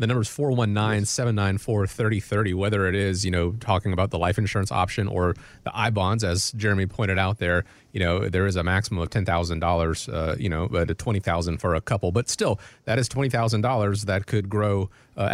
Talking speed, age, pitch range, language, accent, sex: 185 wpm, 30-49, 90-110 Hz, English, American, male